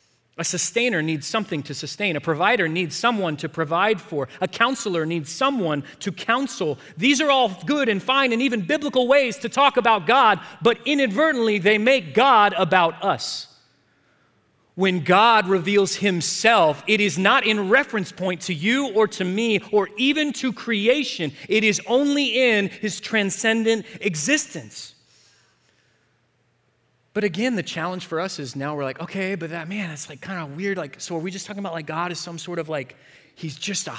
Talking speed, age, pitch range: 180 wpm, 30-49, 155-220 Hz